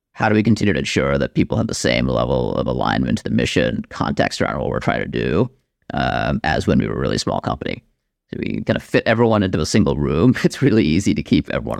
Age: 40-59